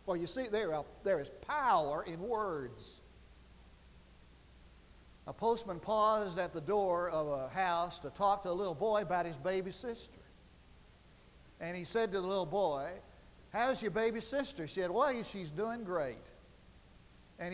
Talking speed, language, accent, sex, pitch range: 155 wpm, English, American, male, 170-230 Hz